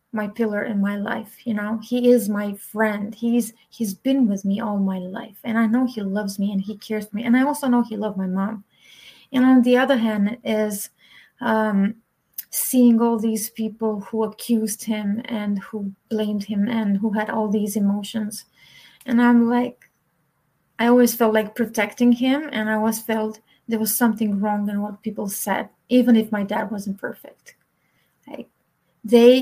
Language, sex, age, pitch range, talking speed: English, female, 30-49, 210-235 Hz, 185 wpm